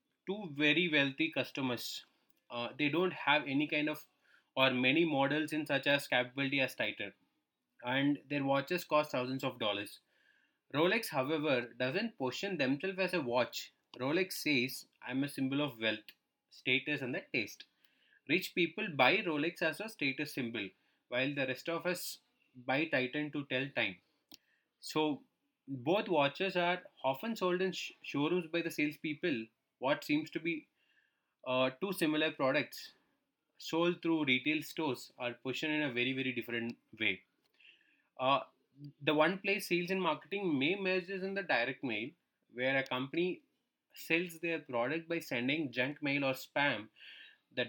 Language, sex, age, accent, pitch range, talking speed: English, male, 20-39, Indian, 130-180 Hz, 150 wpm